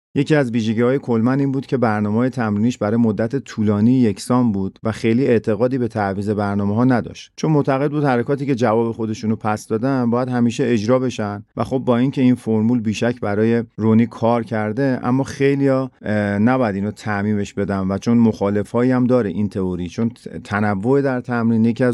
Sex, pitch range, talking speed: male, 105-125 Hz, 180 wpm